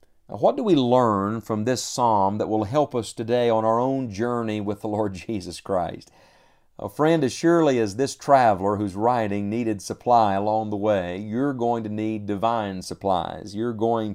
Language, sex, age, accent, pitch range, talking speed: English, male, 50-69, American, 100-125 Hz, 180 wpm